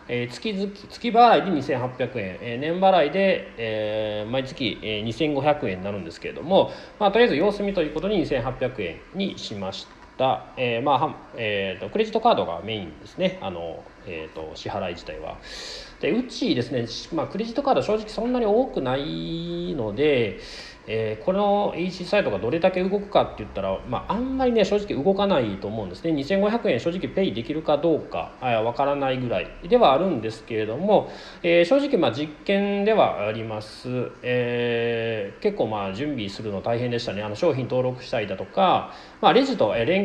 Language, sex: Japanese, male